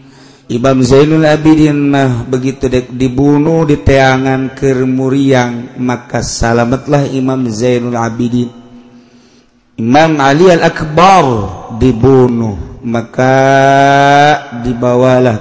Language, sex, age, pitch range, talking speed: Indonesian, male, 50-69, 125-150 Hz, 80 wpm